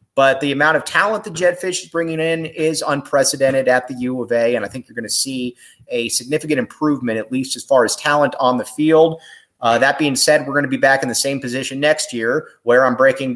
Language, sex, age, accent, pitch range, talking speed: English, male, 30-49, American, 125-165 Hz, 245 wpm